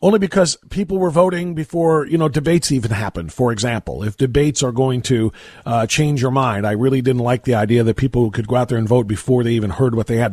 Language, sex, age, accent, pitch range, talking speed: English, male, 40-59, American, 125-175 Hz, 250 wpm